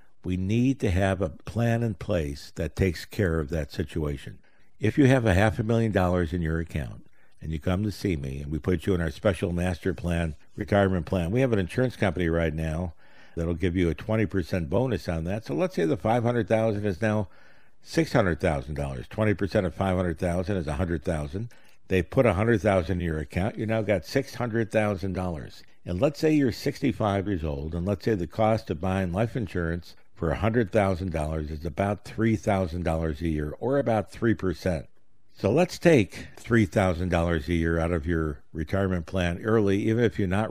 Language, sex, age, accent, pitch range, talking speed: English, male, 60-79, American, 80-105 Hz, 195 wpm